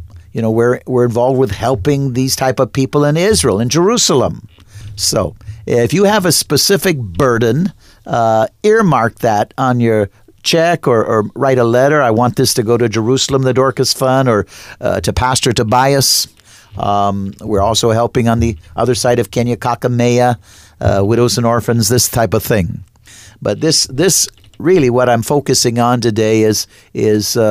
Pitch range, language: 105-130 Hz, English